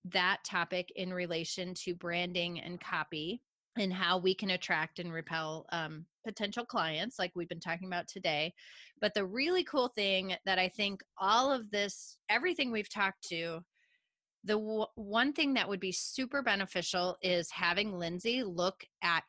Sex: female